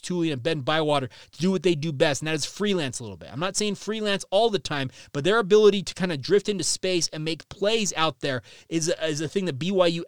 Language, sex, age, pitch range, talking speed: English, male, 30-49, 145-180 Hz, 260 wpm